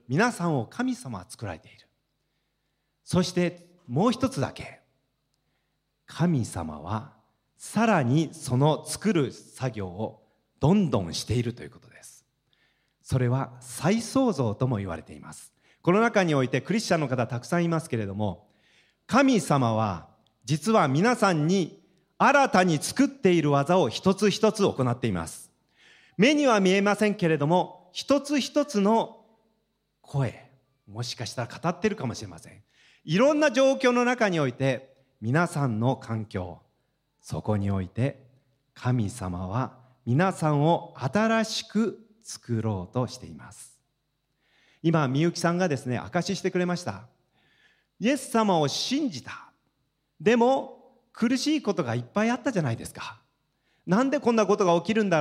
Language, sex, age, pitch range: Japanese, male, 40-59, 125-205 Hz